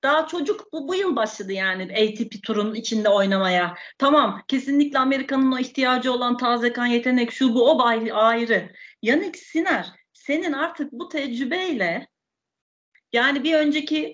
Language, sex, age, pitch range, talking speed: Turkish, female, 40-59, 230-300 Hz, 140 wpm